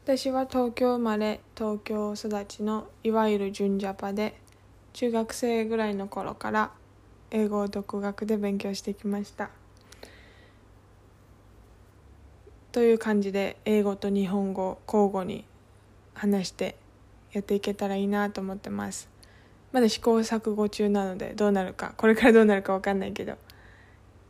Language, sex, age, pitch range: English, female, 20-39, 150-225 Hz